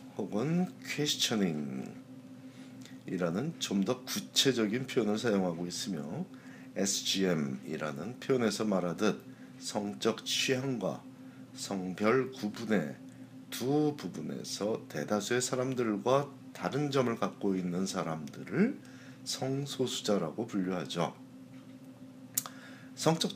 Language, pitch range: Korean, 90-130 Hz